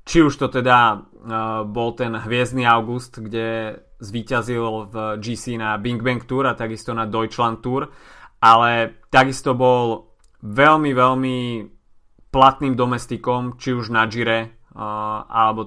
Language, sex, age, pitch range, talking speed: Slovak, male, 20-39, 115-125 Hz, 125 wpm